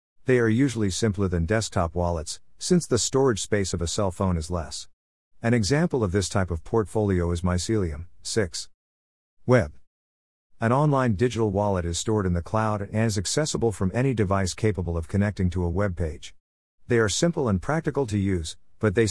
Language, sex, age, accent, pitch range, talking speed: English, male, 50-69, American, 85-110 Hz, 185 wpm